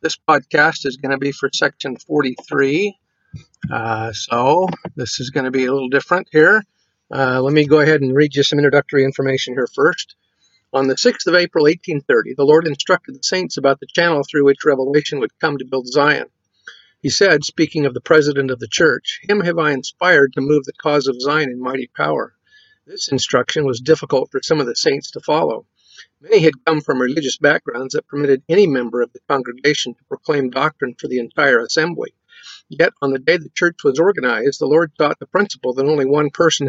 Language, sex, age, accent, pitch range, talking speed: English, male, 50-69, American, 135-165 Hz, 205 wpm